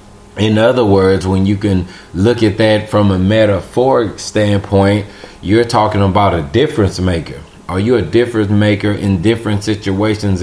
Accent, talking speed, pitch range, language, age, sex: American, 155 wpm, 95-110 Hz, English, 20-39, male